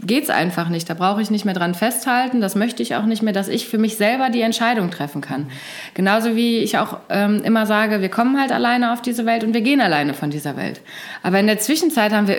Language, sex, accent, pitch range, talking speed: German, female, German, 180-235 Hz, 250 wpm